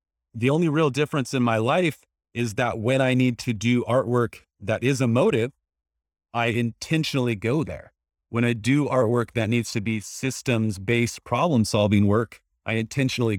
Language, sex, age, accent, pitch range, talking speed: English, male, 30-49, American, 105-130 Hz, 165 wpm